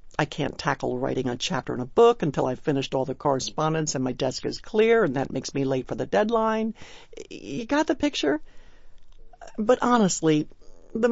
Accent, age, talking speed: American, 60-79, 190 wpm